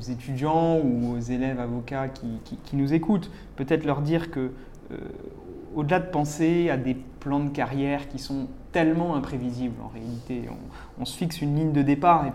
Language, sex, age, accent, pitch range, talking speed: French, male, 20-39, French, 125-155 Hz, 195 wpm